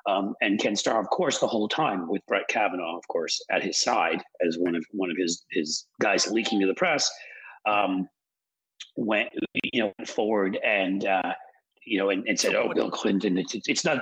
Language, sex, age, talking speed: English, male, 40-59, 205 wpm